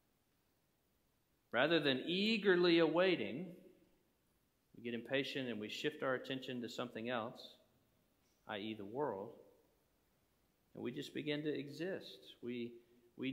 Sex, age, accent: male, 40-59, American